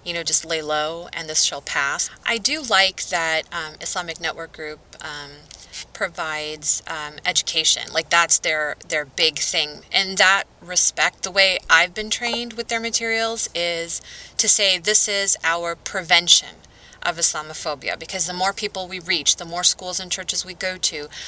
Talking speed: 170 wpm